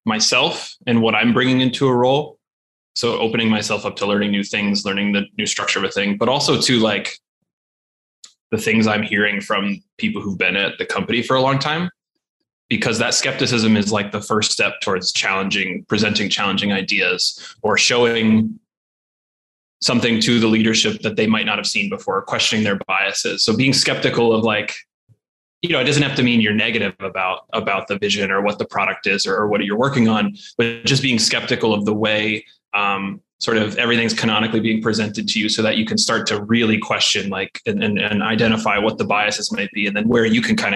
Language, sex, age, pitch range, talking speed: English, male, 20-39, 105-120 Hz, 205 wpm